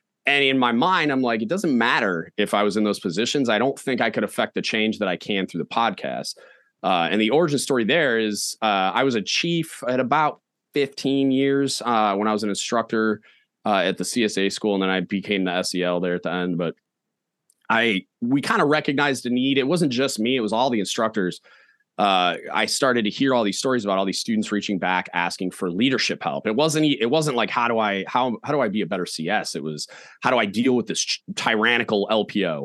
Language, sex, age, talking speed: English, male, 30-49, 235 wpm